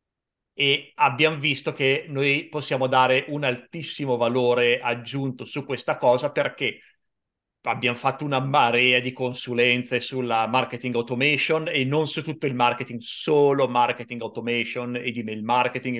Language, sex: Italian, male